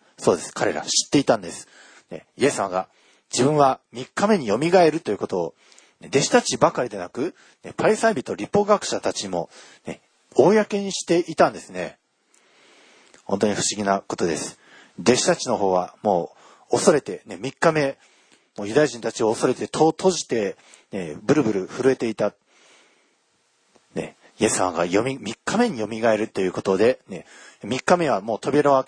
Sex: male